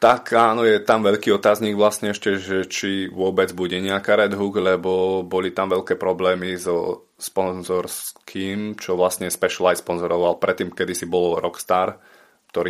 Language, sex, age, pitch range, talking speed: Slovak, male, 20-39, 85-95 Hz, 150 wpm